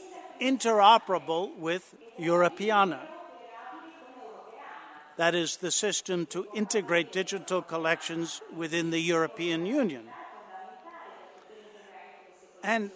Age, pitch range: 60-79, 175-230 Hz